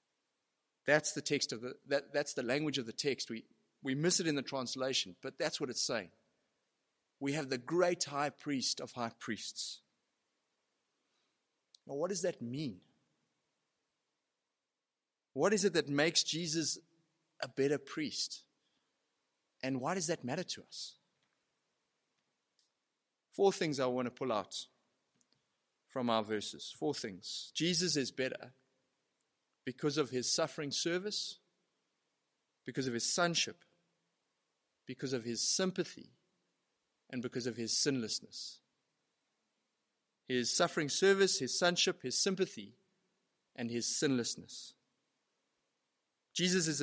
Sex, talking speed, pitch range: male, 125 wpm, 130-175 Hz